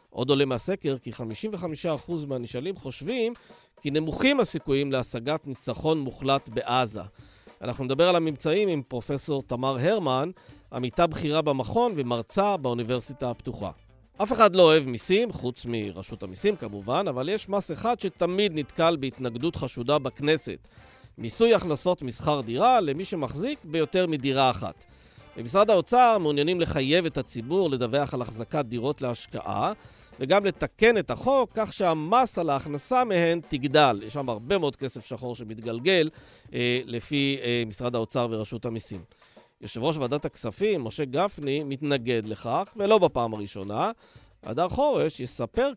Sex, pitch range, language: male, 125-170 Hz, Hebrew